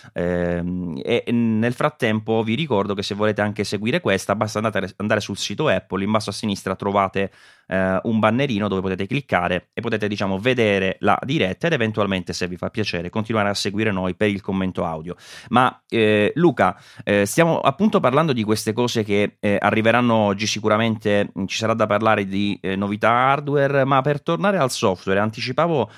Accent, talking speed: native, 180 wpm